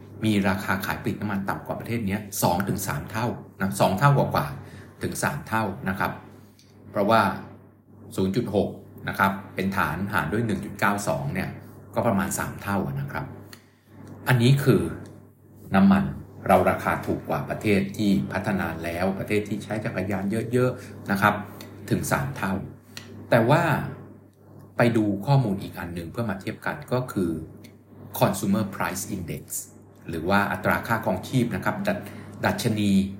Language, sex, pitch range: Thai, male, 100-115 Hz